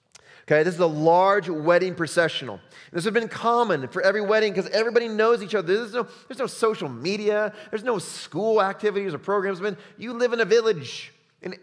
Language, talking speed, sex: English, 190 wpm, male